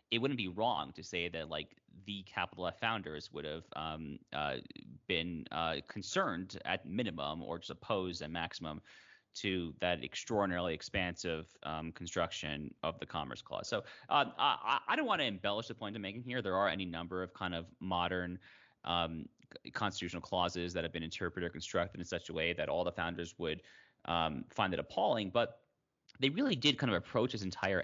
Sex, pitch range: male, 80-95 Hz